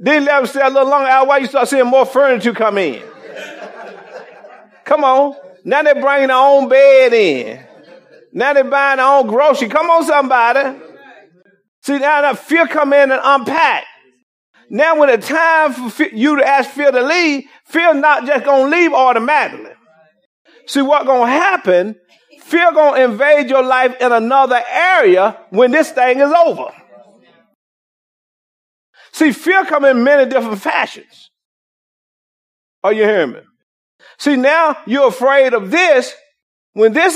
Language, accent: English, American